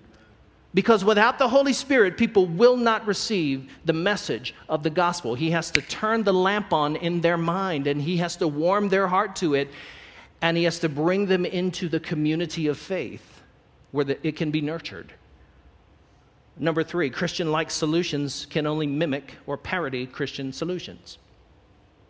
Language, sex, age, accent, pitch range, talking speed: English, male, 50-69, American, 155-195 Hz, 165 wpm